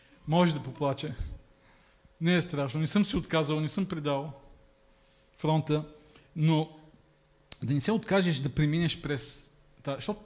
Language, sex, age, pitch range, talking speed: Bulgarian, male, 40-59, 125-170 Hz, 140 wpm